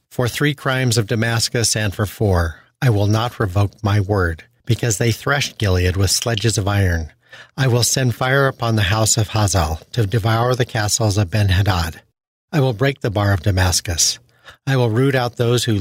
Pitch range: 100-120 Hz